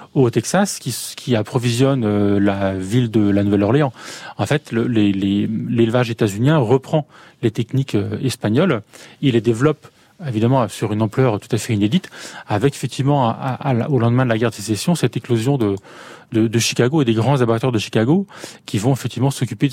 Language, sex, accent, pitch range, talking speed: French, male, French, 110-145 Hz, 185 wpm